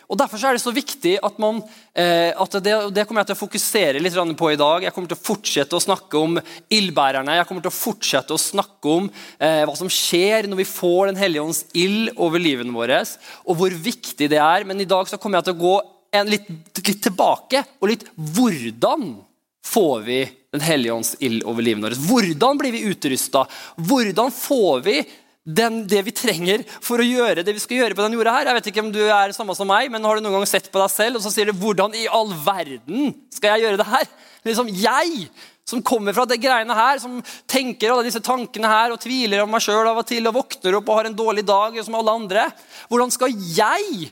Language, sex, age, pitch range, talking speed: English, male, 20-39, 180-240 Hz, 220 wpm